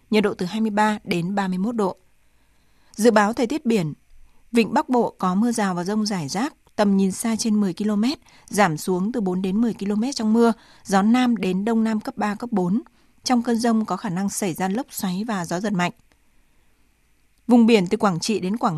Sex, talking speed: female, 215 wpm